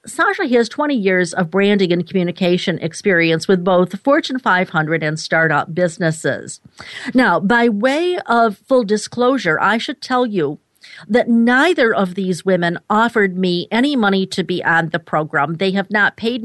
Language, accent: English, American